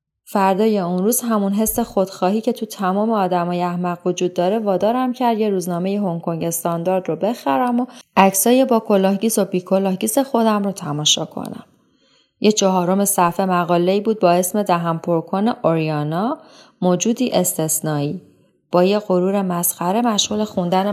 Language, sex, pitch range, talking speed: Persian, female, 175-225 Hz, 150 wpm